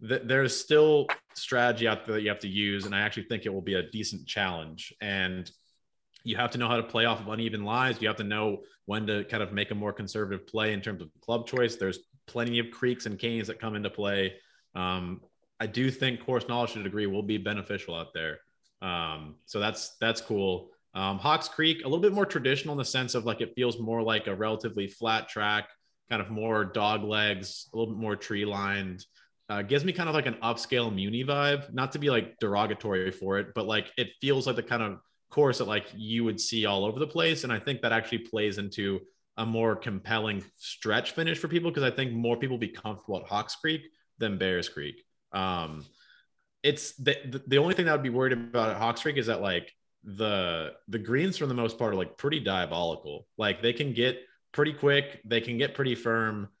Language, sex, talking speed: English, male, 225 wpm